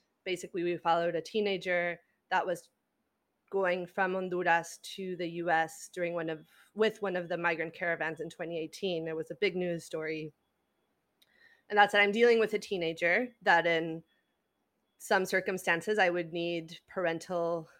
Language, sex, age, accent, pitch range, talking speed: English, female, 20-39, American, 170-205 Hz, 160 wpm